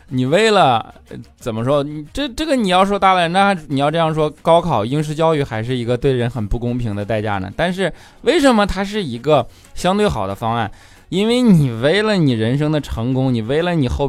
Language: Chinese